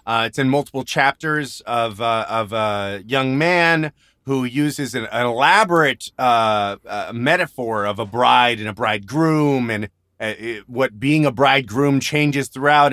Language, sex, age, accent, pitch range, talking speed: English, male, 30-49, American, 110-145 Hz, 155 wpm